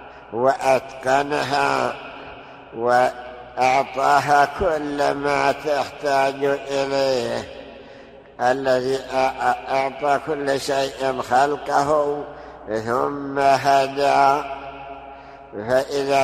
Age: 60-79